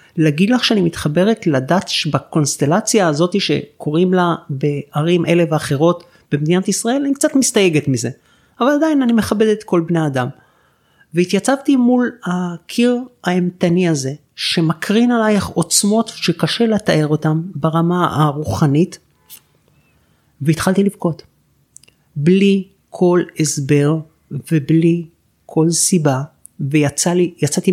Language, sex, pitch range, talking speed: Hebrew, male, 155-190 Hz, 105 wpm